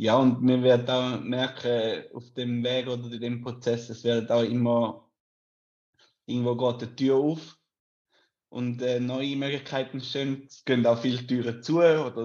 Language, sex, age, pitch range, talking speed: English, male, 20-39, 120-135 Hz, 160 wpm